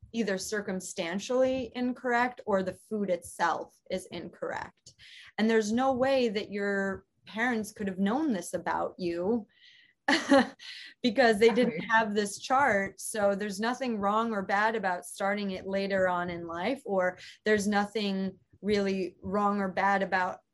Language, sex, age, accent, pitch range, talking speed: English, female, 30-49, American, 180-220 Hz, 145 wpm